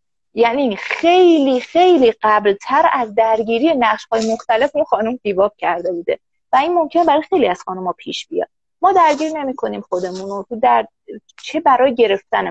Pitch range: 200-280 Hz